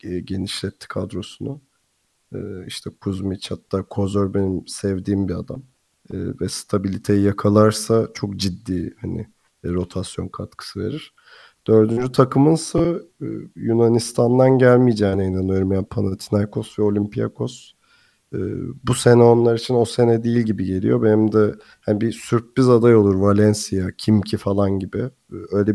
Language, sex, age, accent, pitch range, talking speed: Turkish, male, 40-59, native, 100-115 Hz, 115 wpm